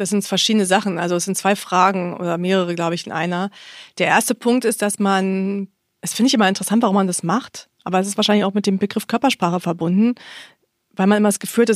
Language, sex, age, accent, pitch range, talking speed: English, female, 30-49, German, 180-220 Hz, 240 wpm